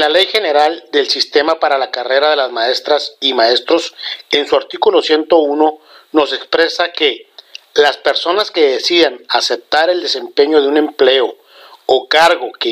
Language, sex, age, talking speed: Spanish, male, 50-69, 155 wpm